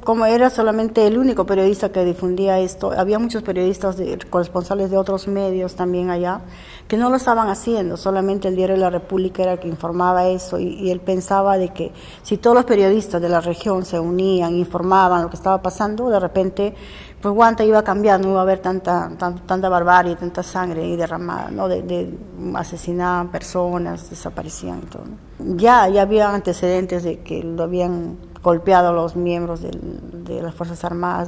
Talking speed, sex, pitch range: 185 wpm, female, 175-200 Hz